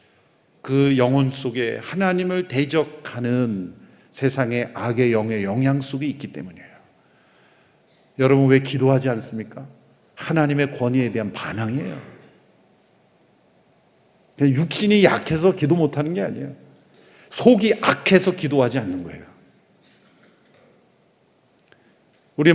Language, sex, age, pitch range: Korean, male, 50-69, 130-190 Hz